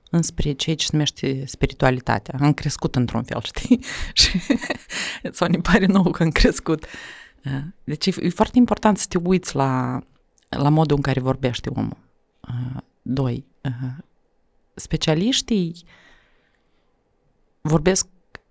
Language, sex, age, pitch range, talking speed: Romanian, female, 30-49, 140-195 Hz, 110 wpm